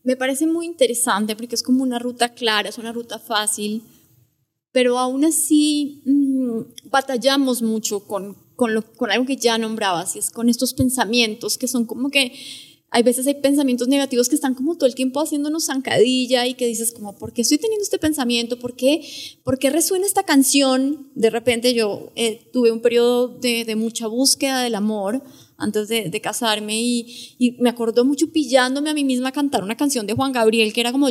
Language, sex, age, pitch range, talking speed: Spanish, female, 20-39, 230-280 Hz, 195 wpm